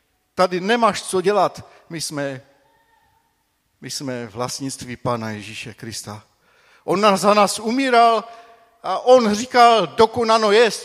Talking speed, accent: 120 wpm, native